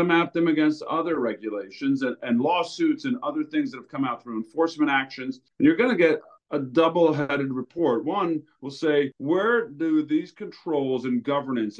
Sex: male